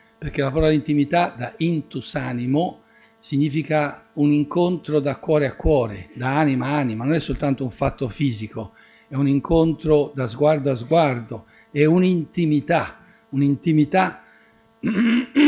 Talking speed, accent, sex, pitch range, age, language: 130 wpm, native, male, 130-155 Hz, 60-79, Italian